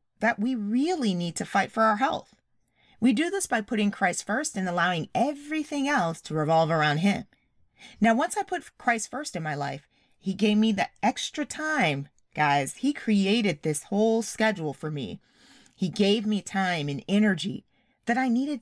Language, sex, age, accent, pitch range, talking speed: English, female, 30-49, American, 165-245 Hz, 180 wpm